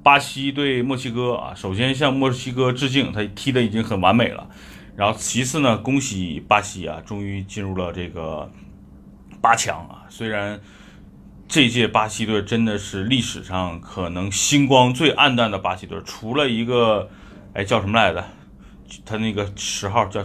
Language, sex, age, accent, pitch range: Chinese, male, 30-49, native, 100-145 Hz